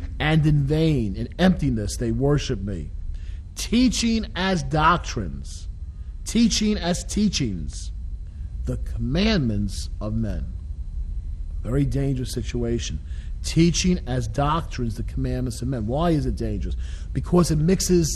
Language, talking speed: English, 115 wpm